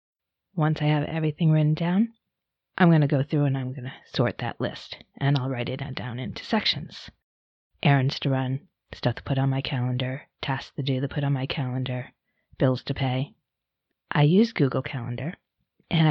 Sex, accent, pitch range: female, American, 140-180 Hz